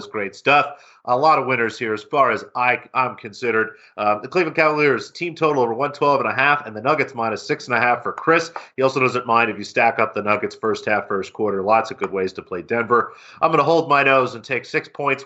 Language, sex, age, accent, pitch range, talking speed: English, male, 40-59, American, 115-140 Hz, 230 wpm